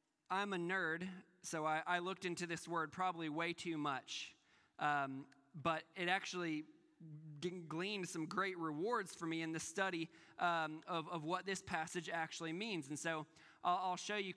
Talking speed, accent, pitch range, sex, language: 170 wpm, American, 160-195 Hz, male, English